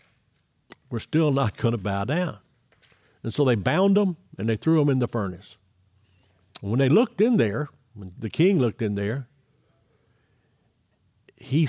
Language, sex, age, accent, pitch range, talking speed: English, male, 60-79, American, 105-155 Hz, 165 wpm